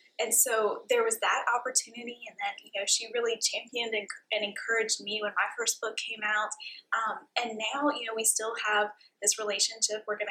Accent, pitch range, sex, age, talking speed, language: American, 210-295 Hz, female, 10-29, 200 wpm, English